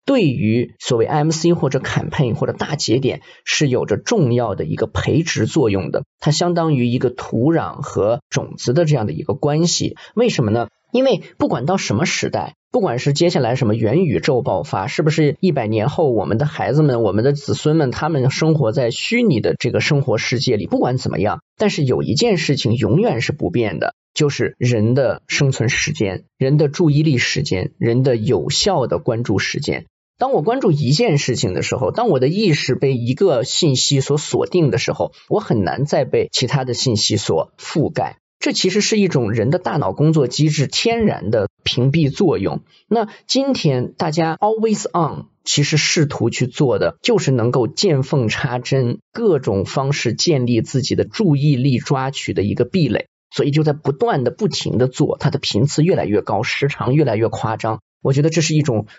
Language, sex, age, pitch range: Chinese, male, 20-39, 125-160 Hz